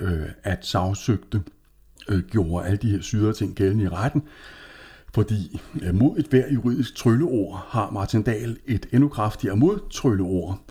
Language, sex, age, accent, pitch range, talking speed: Danish, male, 60-79, native, 85-115 Hz, 145 wpm